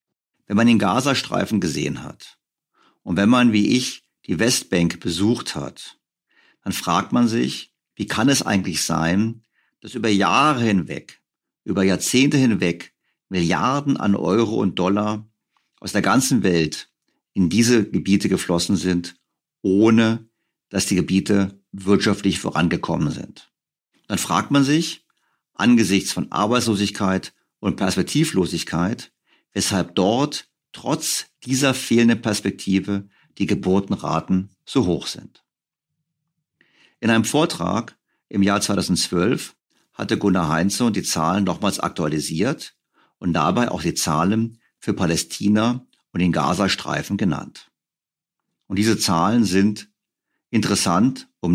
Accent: German